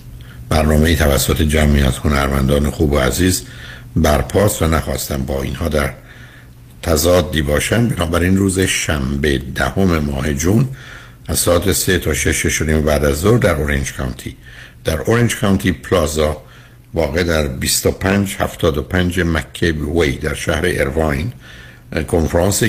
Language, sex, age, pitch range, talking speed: Persian, male, 60-79, 70-90 Hz, 130 wpm